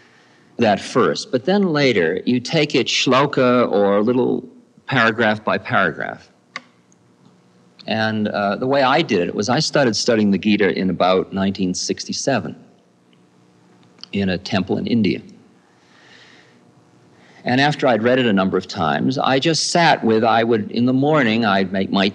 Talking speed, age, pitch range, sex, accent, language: 150 wpm, 50-69, 85-125 Hz, male, American, English